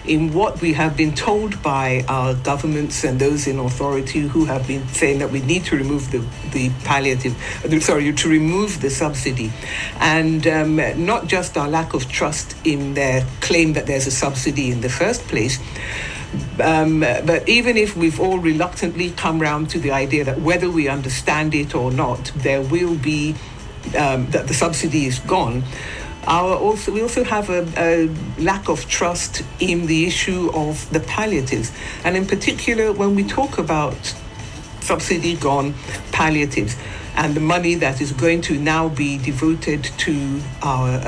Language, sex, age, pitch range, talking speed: English, female, 60-79, 135-175 Hz, 170 wpm